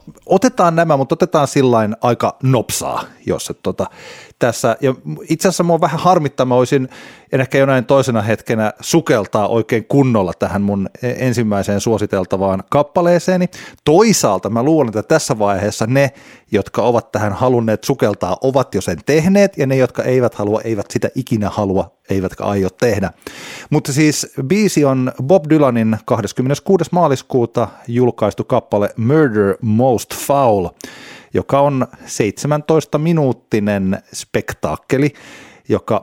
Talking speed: 125 wpm